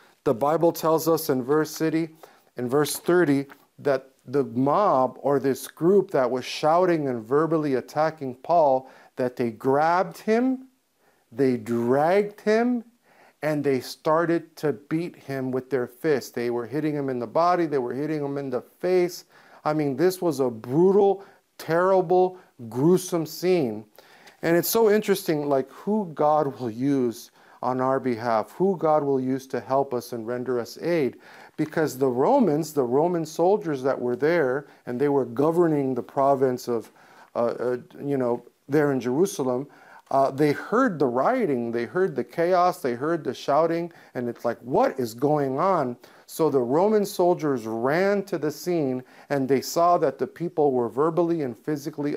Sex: male